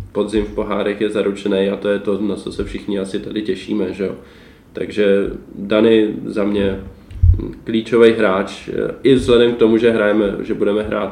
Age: 20-39